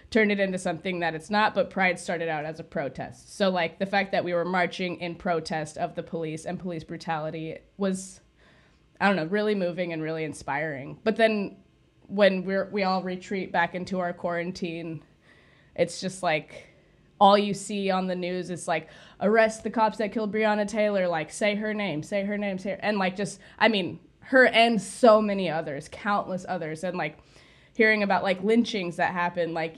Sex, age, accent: female, 20-39, American